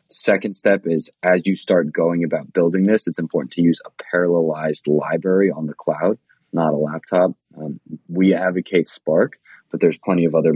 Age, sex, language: 20-39, male, English